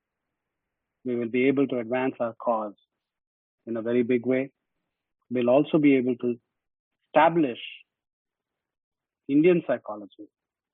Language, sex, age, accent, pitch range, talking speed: English, male, 40-59, Indian, 140-200 Hz, 115 wpm